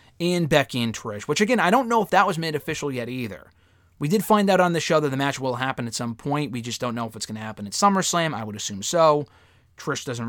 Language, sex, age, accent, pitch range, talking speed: English, male, 30-49, American, 120-170 Hz, 280 wpm